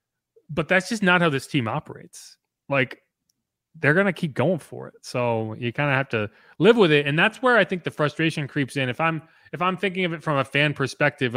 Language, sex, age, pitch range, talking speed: English, male, 30-49, 120-160 Hz, 230 wpm